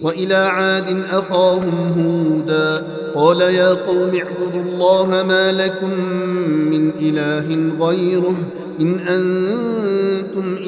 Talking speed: 90 wpm